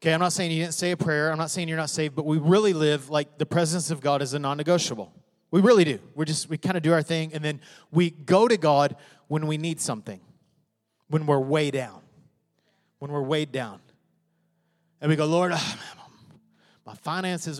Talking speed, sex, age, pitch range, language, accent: 220 wpm, male, 30-49, 150-190 Hz, English, American